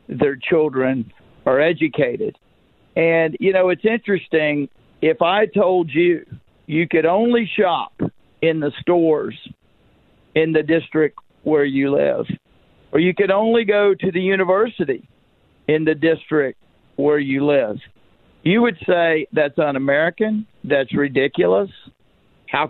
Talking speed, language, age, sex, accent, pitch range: 125 wpm, English, 50-69, male, American, 145-170 Hz